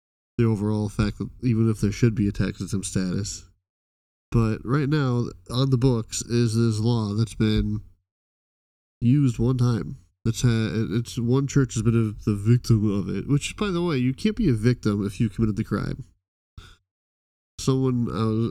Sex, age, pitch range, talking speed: male, 20-39, 100-125 Hz, 170 wpm